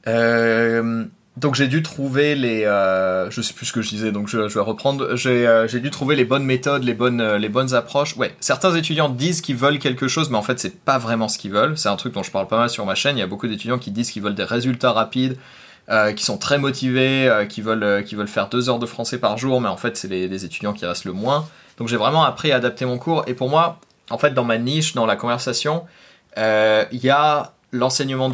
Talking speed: 265 wpm